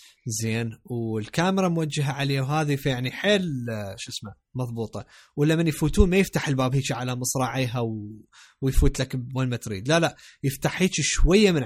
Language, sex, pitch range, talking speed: Arabic, male, 125-155 Hz, 150 wpm